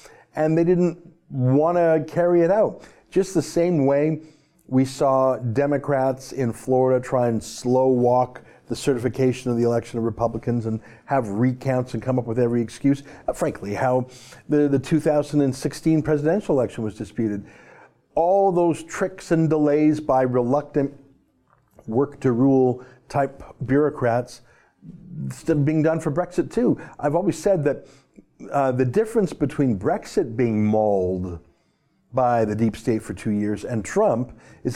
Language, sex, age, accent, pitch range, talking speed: English, male, 50-69, American, 125-155 Hz, 145 wpm